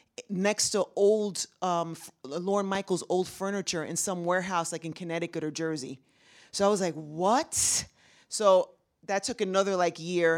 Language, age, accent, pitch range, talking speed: English, 30-49, American, 160-195 Hz, 155 wpm